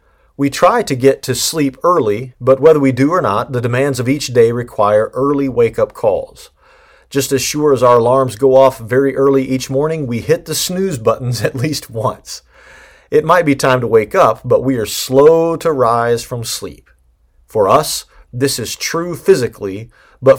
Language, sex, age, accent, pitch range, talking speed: English, male, 40-59, American, 120-150 Hz, 190 wpm